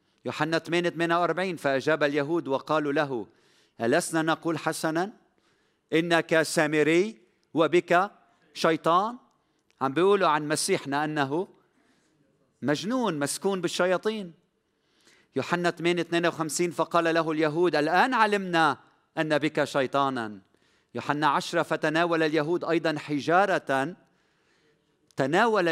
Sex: male